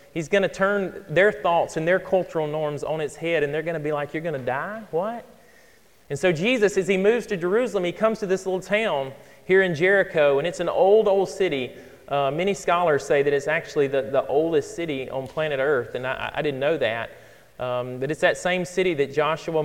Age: 30-49